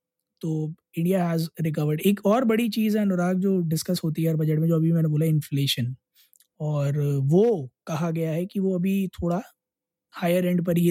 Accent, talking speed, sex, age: native, 195 wpm, male, 20-39